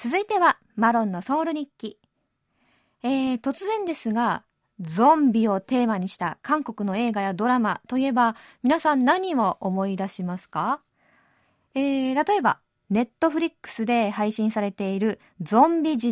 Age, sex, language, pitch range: 20-39, female, Japanese, 190-265 Hz